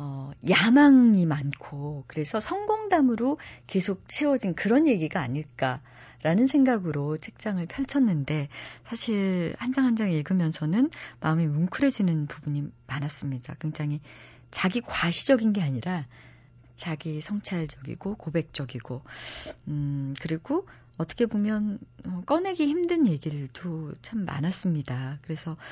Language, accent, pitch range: Korean, native, 140-190 Hz